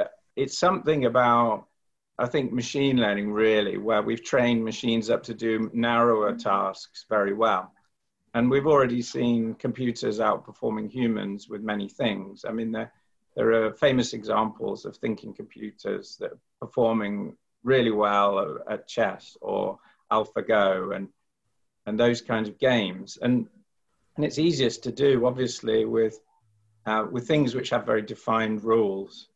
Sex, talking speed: male, 145 wpm